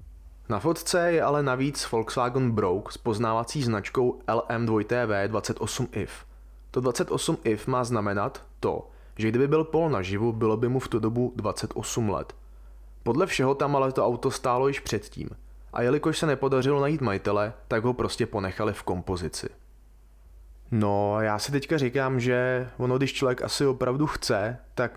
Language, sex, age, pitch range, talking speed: Czech, male, 20-39, 105-130 Hz, 150 wpm